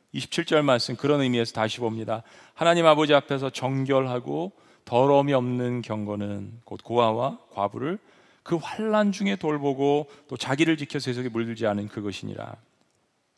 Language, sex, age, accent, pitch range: Korean, male, 40-59, native, 120-160 Hz